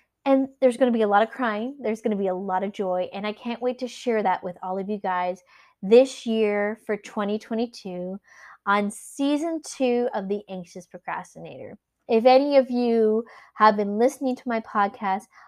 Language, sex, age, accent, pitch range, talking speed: English, female, 20-39, American, 195-245 Hz, 195 wpm